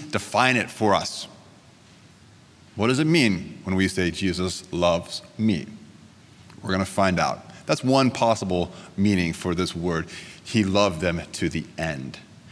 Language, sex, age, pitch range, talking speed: English, male, 30-49, 95-115 Hz, 155 wpm